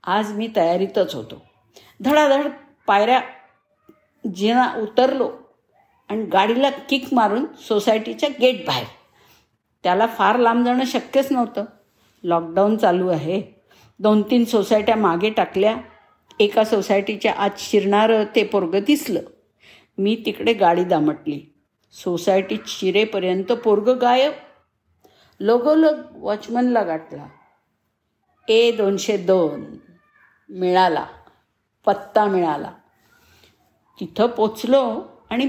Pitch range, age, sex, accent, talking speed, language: 190-260 Hz, 50-69, female, native, 95 wpm, Marathi